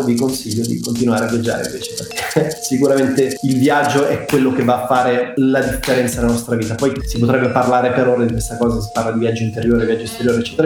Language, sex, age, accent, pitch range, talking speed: Italian, male, 30-49, native, 125-150 Hz, 220 wpm